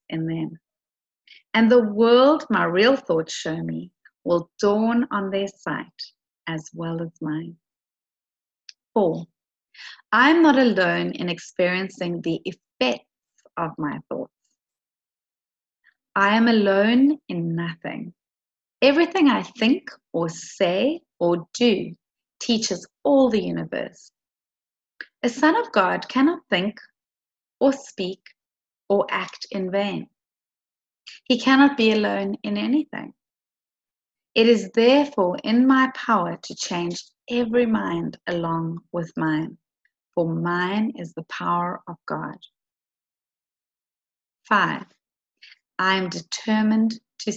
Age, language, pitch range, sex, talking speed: 30-49, English, 170-245 Hz, female, 115 wpm